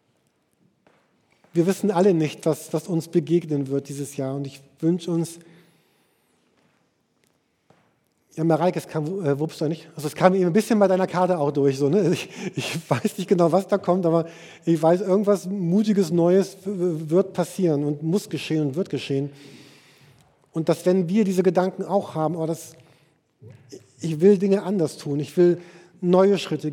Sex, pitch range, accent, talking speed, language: male, 150-185 Hz, German, 170 wpm, German